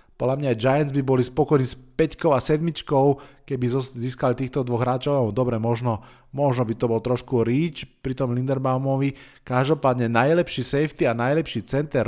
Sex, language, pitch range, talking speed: male, Slovak, 120-150 Hz, 155 wpm